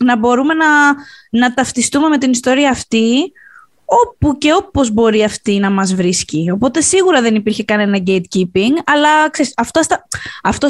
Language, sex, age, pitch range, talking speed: Greek, female, 20-39, 215-305 Hz, 155 wpm